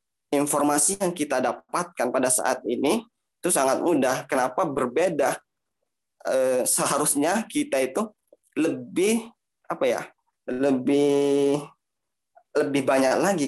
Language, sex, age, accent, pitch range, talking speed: Indonesian, male, 20-39, native, 130-155 Hz, 100 wpm